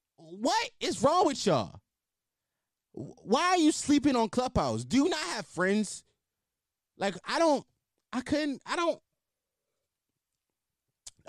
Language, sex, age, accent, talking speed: English, male, 20-39, American, 120 wpm